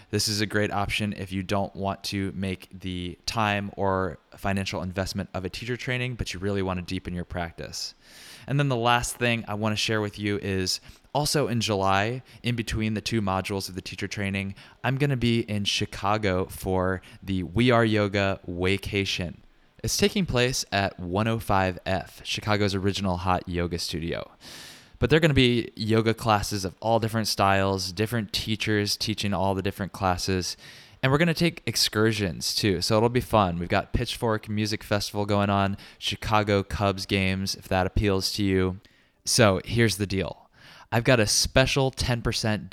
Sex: male